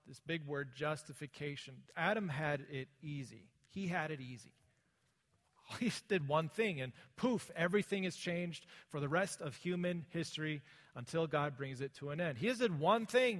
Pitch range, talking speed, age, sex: 135-185 Hz, 180 wpm, 40-59, male